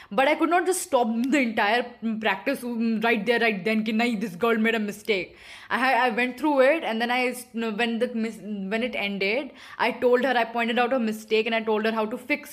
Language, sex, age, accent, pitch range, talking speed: English, female, 10-29, Indian, 225-280 Hz, 225 wpm